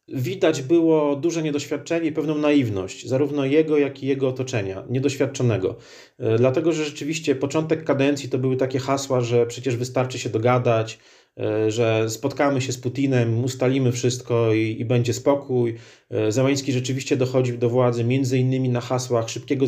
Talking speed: 150 wpm